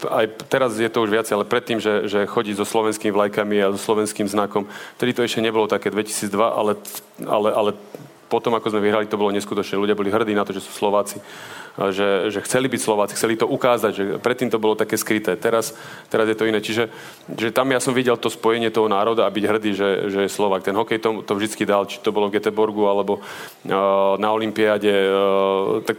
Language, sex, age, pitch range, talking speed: Slovak, male, 30-49, 100-115 Hz, 215 wpm